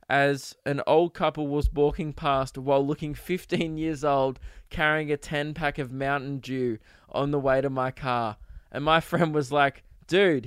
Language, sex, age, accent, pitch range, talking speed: English, male, 20-39, Australian, 140-160 Hz, 180 wpm